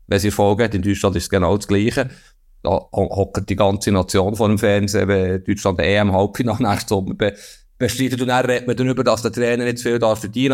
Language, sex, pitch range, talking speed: German, male, 110-135 Hz, 230 wpm